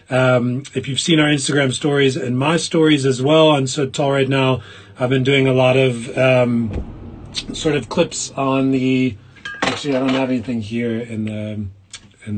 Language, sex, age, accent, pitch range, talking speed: English, male, 30-49, American, 120-150 Hz, 185 wpm